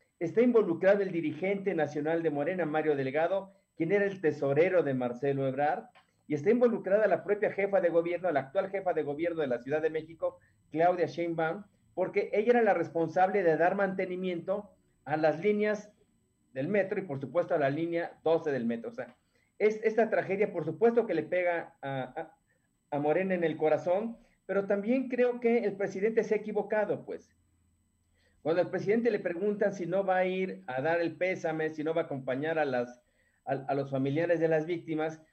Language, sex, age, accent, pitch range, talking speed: Spanish, male, 40-59, Mexican, 150-195 Hz, 190 wpm